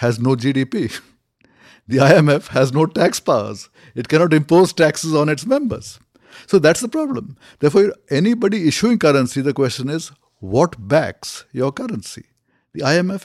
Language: English